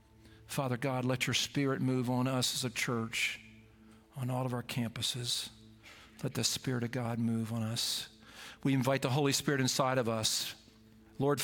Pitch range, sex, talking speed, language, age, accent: 110-130 Hz, male, 175 wpm, English, 50-69, American